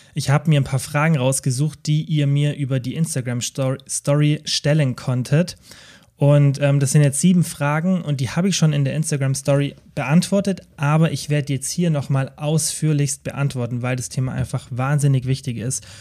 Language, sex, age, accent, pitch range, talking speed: German, male, 30-49, German, 130-150 Hz, 170 wpm